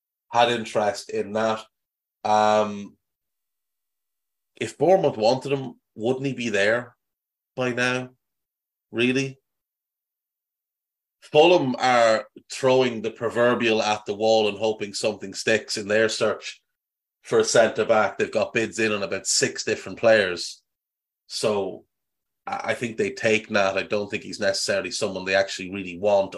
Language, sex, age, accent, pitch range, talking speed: English, male, 30-49, Irish, 105-130 Hz, 135 wpm